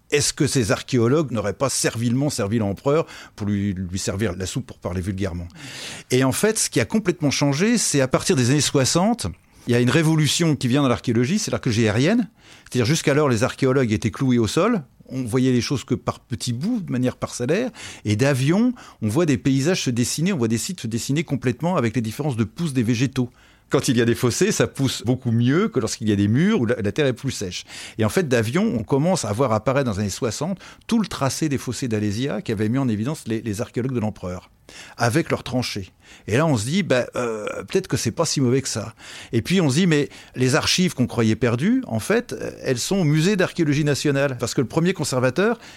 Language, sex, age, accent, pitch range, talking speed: French, male, 40-59, French, 115-150 Hz, 235 wpm